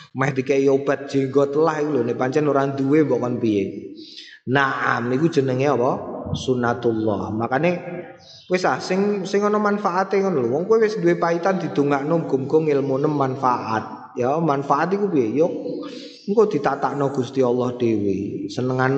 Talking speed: 105 wpm